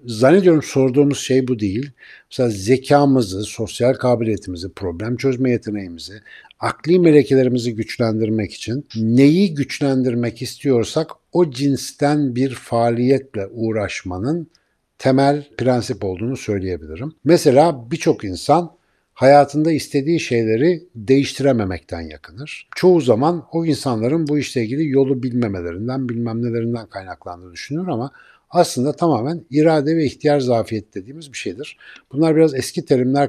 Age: 60-79